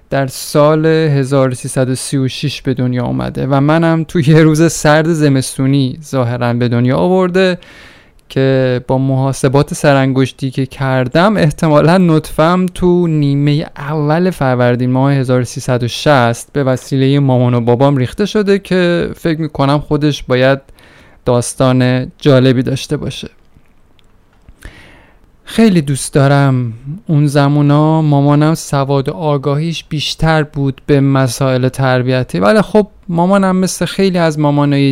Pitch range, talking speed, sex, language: 130-160 Hz, 120 wpm, male, Persian